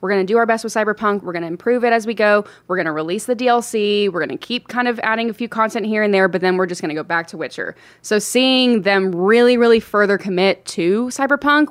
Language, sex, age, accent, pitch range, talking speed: English, female, 20-39, American, 185-245 Hz, 275 wpm